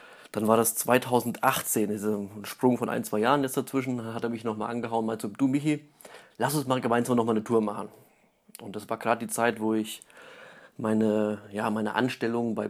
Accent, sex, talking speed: German, male, 195 wpm